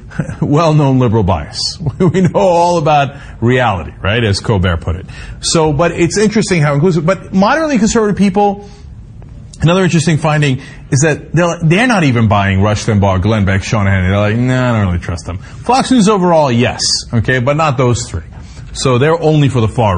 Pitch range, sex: 120-175 Hz, male